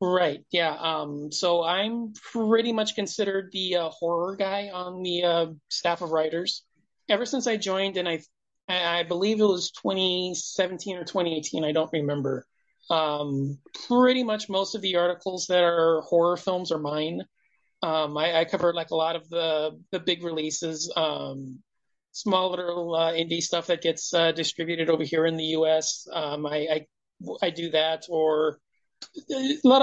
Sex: male